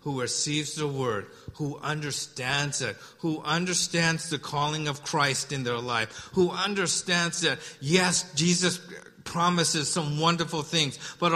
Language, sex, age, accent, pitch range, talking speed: English, male, 50-69, American, 140-175 Hz, 135 wpm